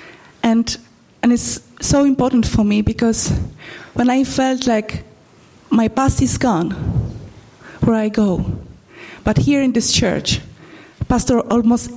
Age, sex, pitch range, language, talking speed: 30-49, female, 220-250 Hz, English, 130 wpm